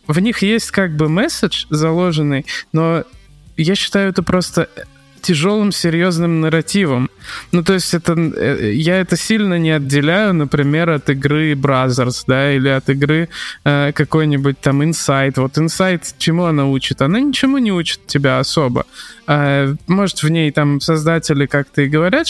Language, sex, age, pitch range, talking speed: Russian, male, 20-39, 145-175 Hz, 150 wpm